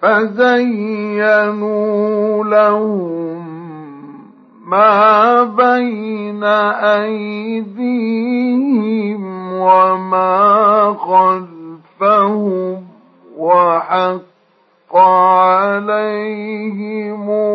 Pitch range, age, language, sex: 185-215 Hz, 50-69, Arabic, male